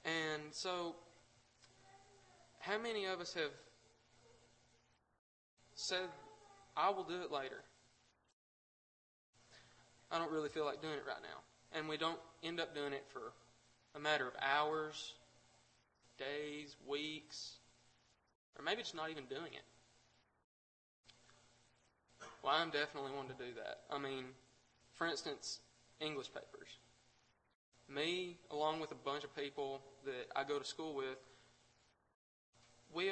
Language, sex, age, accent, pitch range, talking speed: English, male, 20-39, American, 130-170 Hz, 125 wpm